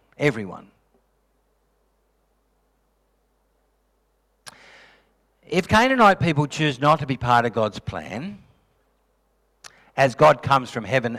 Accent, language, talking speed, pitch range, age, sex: Australian, English, 90 wpm, 115-160 Hz, 60-79, male